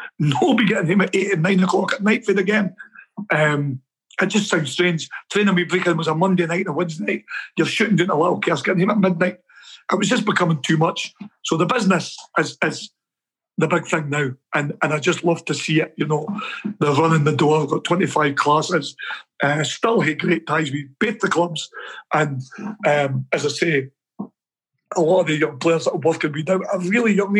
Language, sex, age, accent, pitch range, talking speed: English, male, 50-69, British, 155-190 Hz, 225 wpm